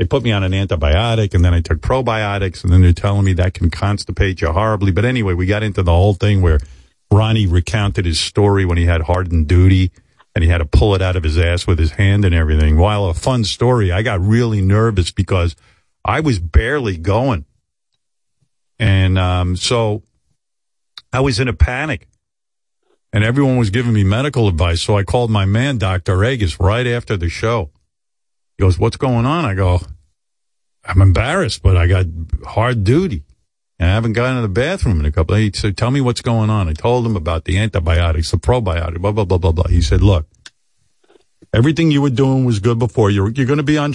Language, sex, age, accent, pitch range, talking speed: English, male, 50-69, American, 90-120 Hz, 210 wpm